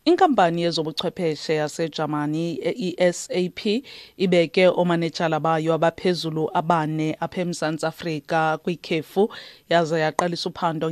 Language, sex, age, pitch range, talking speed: English, female, 30-49, 165-190 Hz, 105 wpm